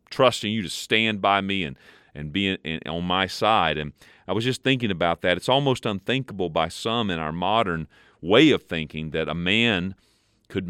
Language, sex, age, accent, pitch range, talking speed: English, male, 40-59, American, 95-115 Hz, 200 wpm